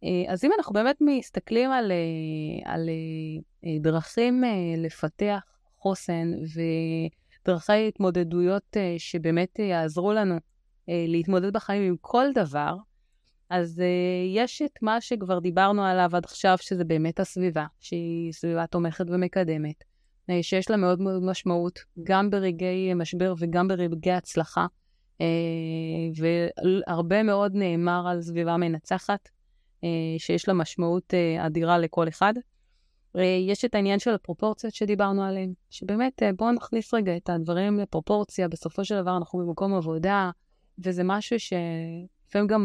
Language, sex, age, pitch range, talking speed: Hebrew, female, 20-39, 170-200 Hz, 115 wpm